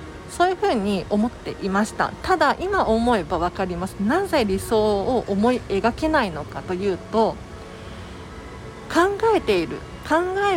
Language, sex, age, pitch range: Japanese, female, 40-59, 195-295 Hz